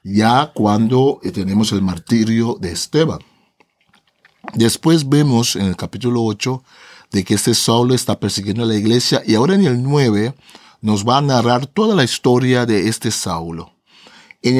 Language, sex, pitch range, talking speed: Spanish, male, 110-135 Hz, 155 wpm